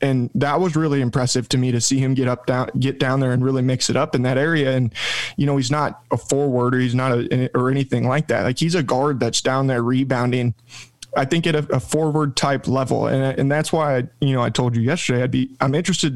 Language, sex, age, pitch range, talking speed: English, male, 20-39, 125-140 Hz, 260 wpm